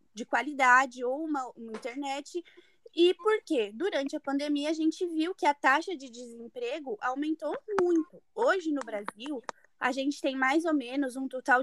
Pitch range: 250-320 Hz